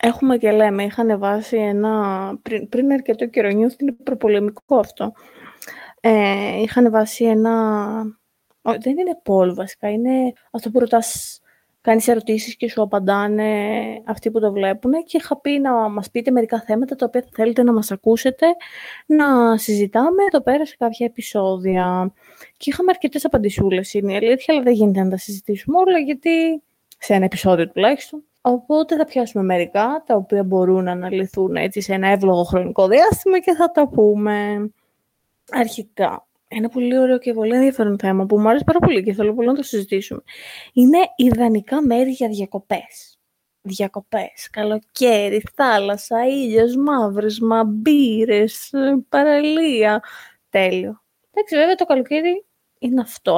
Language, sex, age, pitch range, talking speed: Greek, female, 20-39, 205-260 Hz, 150 wpm